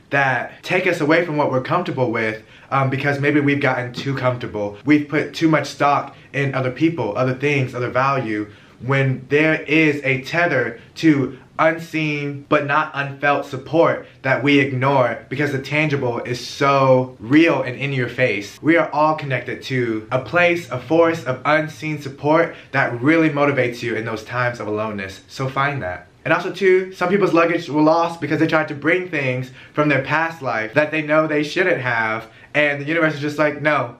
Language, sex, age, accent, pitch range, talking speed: English, male, 20-39, American, 130-155 Hz, 190 wpm